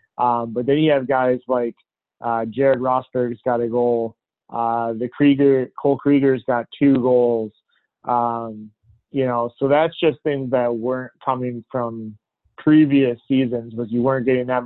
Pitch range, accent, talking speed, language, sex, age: 120-135 Hz, American, 160 wpm, English, male, 20-39